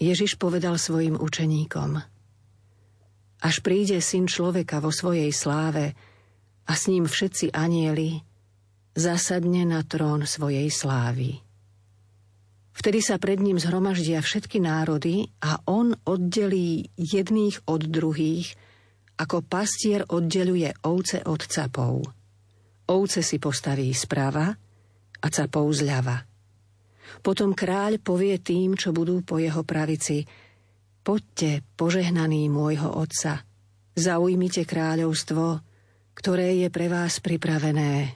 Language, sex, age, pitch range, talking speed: Slovak, female, 50-69, 115-175 Hz, 105 wpm